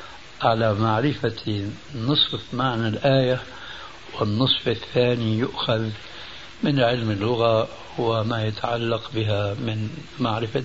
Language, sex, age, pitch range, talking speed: Arabic, male, 60-79, 110-145 Hz, 90 wpm